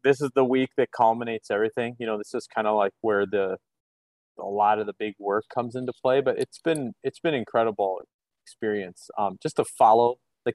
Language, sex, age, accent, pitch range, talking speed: English, male, 30-49, American, 110-135 Hz, 210 wpm